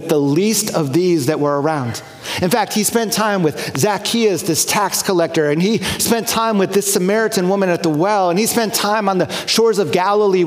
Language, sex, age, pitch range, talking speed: English, male, 40-59, 165-200 Hz, 210 wpm